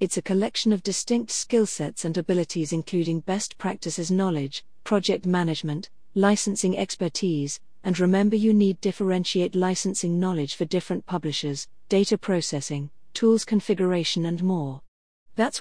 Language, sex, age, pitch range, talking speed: English, female, 40-59, 165-200 Hz, 130 wpm